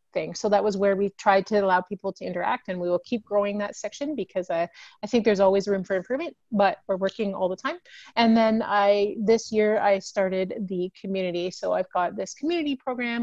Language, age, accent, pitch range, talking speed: English, 30-49, American, 180-215 Hz, 220 wpm